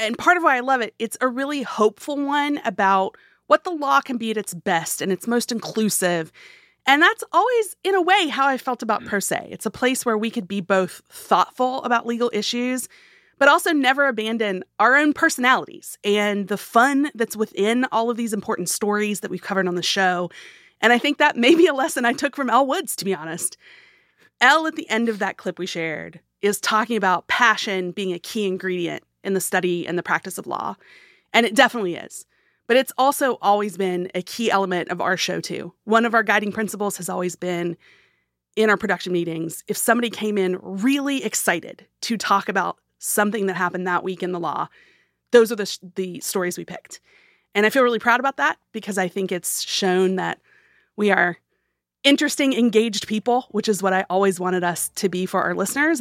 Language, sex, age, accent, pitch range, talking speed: English, female, 30-49, American, 185-250 Hz, 210 wpm